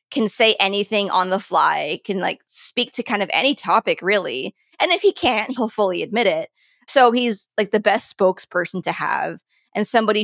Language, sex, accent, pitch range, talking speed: English, female, American, 195-240 Hz, 195 wpm